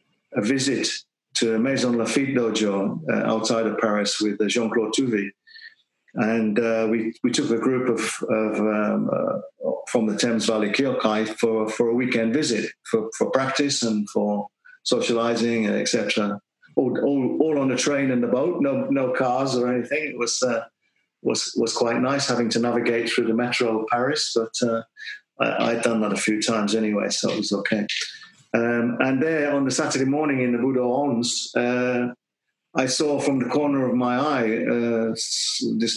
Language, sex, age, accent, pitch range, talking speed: English, male, 50-69, British, 110-130 Hz, 180 wpm